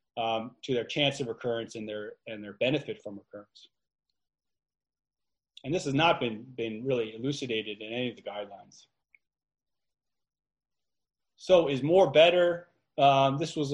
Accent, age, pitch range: American, 30-49, 115-150 Hz